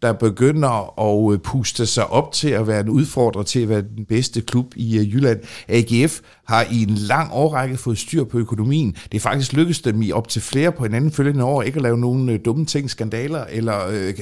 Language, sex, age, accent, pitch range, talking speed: Danish, male, 50-69, native, 110-145 Hz, 215 wpm